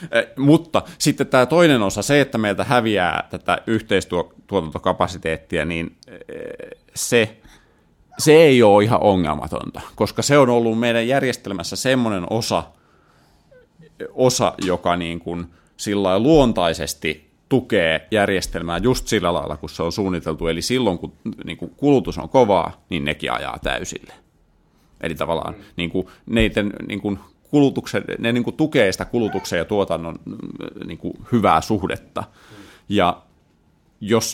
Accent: native